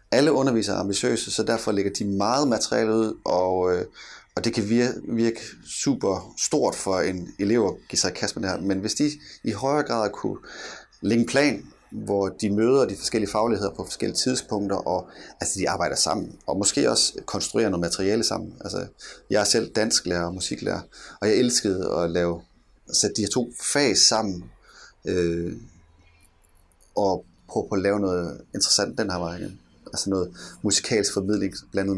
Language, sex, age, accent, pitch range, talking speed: Danish, male, 30-49, native, 90-120 Hz, 170 wpm